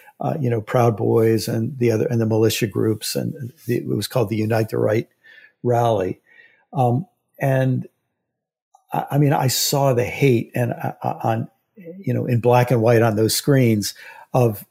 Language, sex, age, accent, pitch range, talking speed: English, male, 50-69, American, 115-140 Hz, 180 wpm